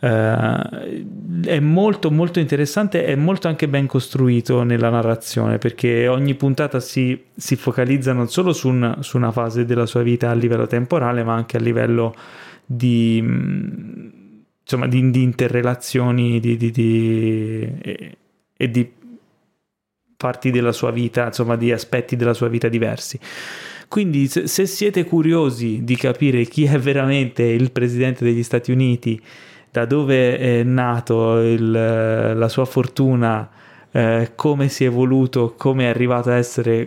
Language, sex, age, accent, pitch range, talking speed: Italian, male, 20-39, native, 120-140 Hz, 135 wpm